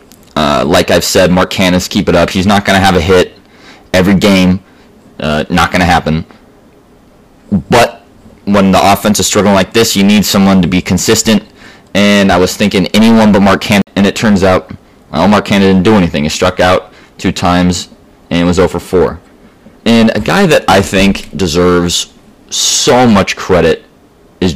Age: 20-39